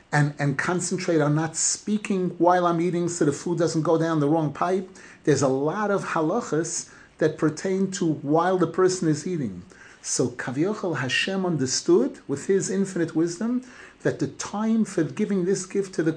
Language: English